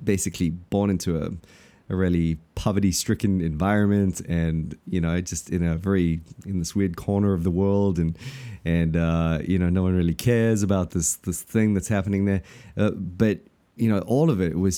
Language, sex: English, male